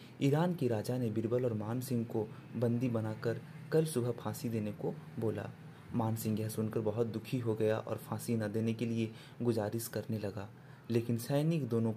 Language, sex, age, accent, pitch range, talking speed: Hindi, male, 30-49, native, 115-155 Hz, 175 wpm